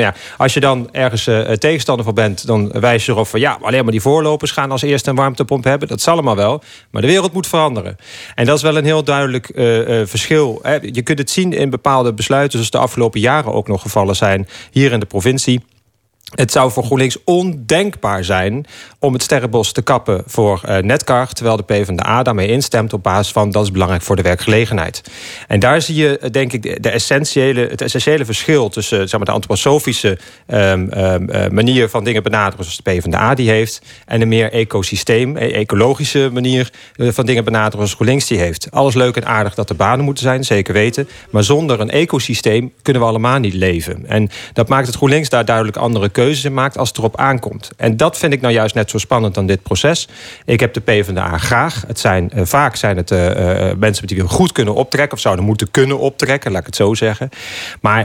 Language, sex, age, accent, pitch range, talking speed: Dutch, male, 40-59, Dutch, 105-135 Hz, 215 wpm